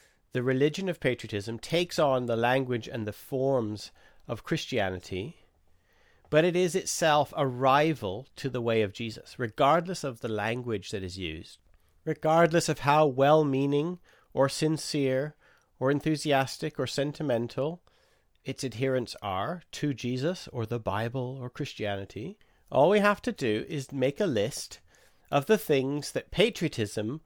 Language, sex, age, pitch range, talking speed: English, male, 40-59, 105-155 Hz, 145 wpm